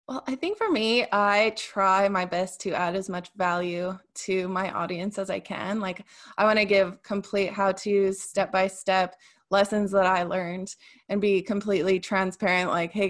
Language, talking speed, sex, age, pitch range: English, 175 wpm, female, 20-39, 180-205 Hz